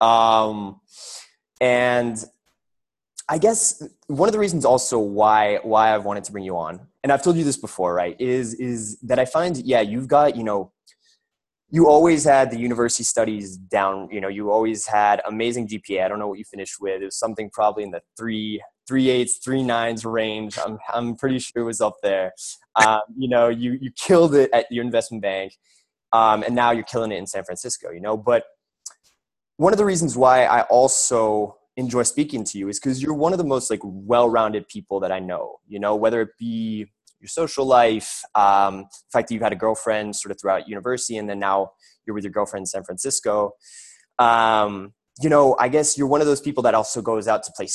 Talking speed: 210 wpm